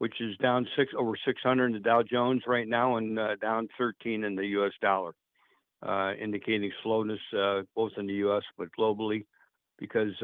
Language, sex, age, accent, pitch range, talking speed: English, male, 60-79, American, 105-120 Hz, 180 wpm